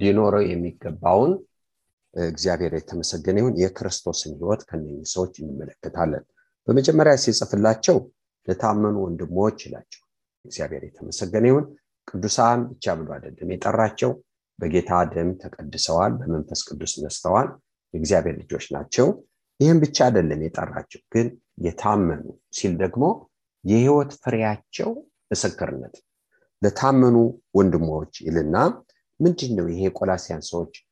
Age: 50-69